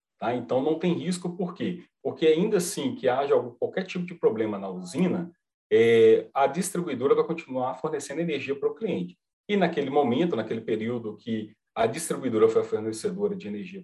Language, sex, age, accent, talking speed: Portuguese, male, 40-59, Brazilian, 170 wpm